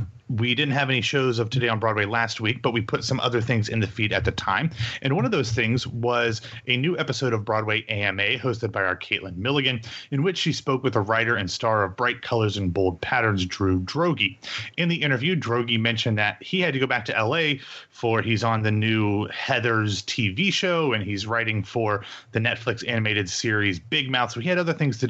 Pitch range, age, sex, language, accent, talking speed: 105-130 Hz, 30-49, male, English, American, 225 wpm